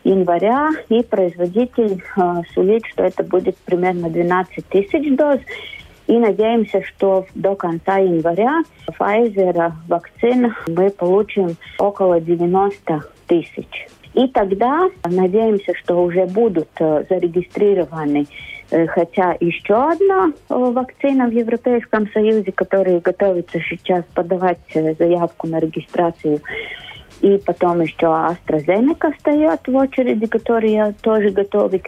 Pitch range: 170-215 Hz